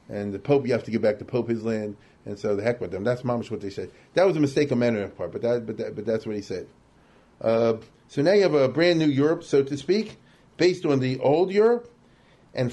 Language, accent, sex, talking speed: English, American, male, 275 wpm